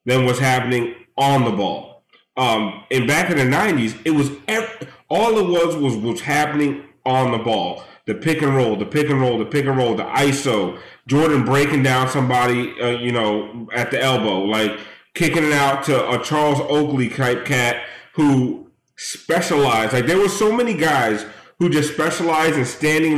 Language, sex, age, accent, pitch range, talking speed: English, male, 30-49, American, 120-150 Hz, 185 wpm